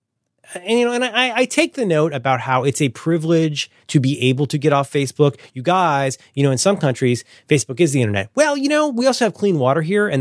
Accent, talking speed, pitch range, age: American, 245 wpm, 125-185 Hz, 30-49